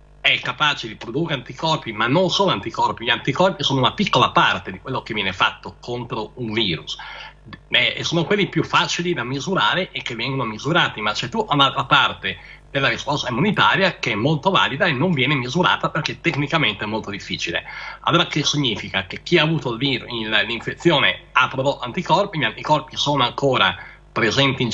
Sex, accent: male, native